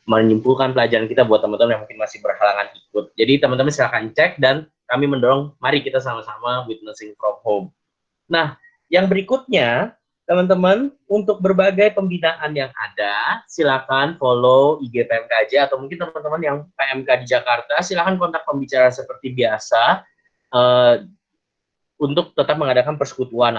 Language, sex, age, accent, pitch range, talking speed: Indonesian, male, 10-29, native, 115-155 Hz, 135 wpm